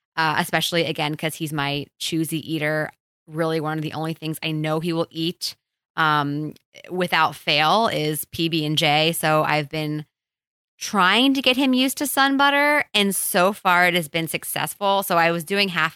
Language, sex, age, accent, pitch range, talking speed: English, female, 20-39, American, 155-190 Hz, 175 wpm